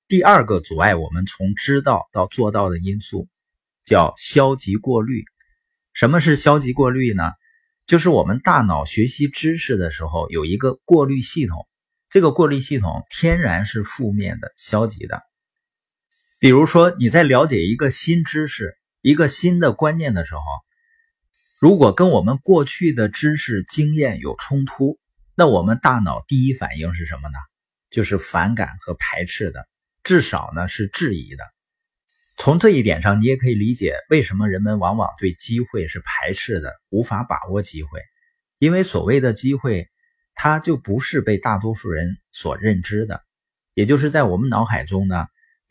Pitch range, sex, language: 100-155 Hz, male, Chinese